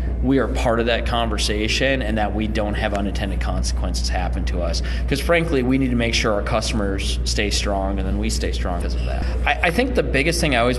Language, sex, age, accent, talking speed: English, male, 30-49, American, 240 wpm